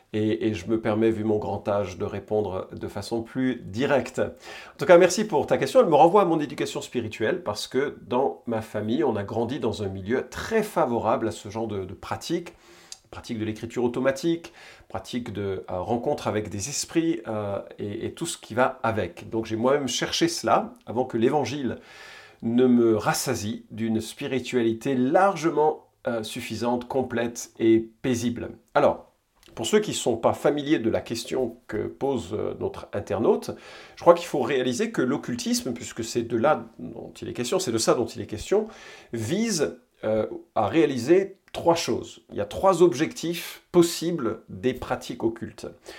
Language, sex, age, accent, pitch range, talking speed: French, male, 40-59, French, 110-150 Hz, 180 wpm